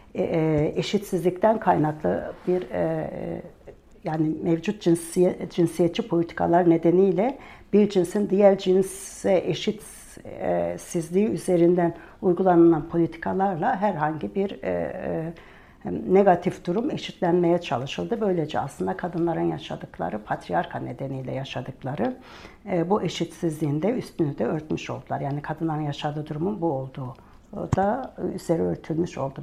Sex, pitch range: female, 160-195 Hz